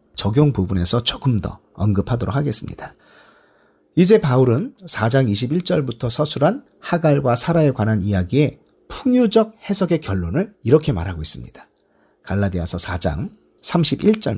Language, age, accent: Korean, 40-59, native